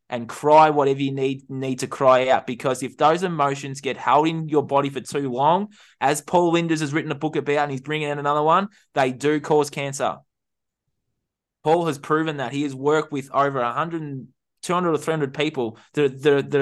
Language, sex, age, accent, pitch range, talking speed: English, male, 20-39, Australian, 130-155 Hz, 200 wpm